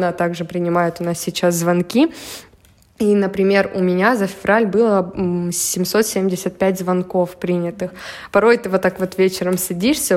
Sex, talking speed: female, 140 wpm